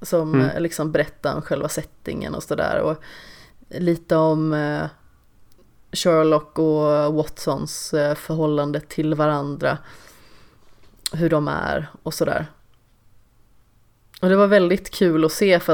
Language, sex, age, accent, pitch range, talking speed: Swedish, female, 30-49, native, 150-170 Hz, 115 wpm